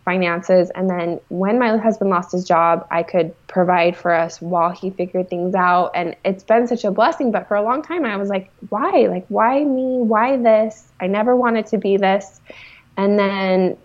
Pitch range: 185-235 Hz